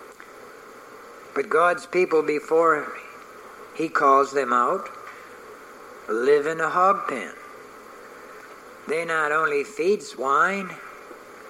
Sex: male